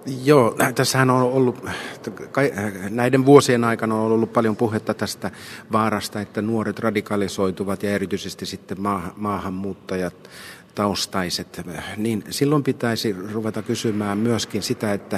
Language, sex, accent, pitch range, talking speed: Finnish, male, native, 105-120 Hz, 110 wpm